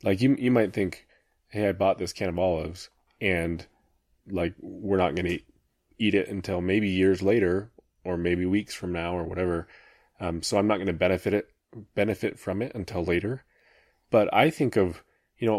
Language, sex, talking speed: English, male, 195 wpm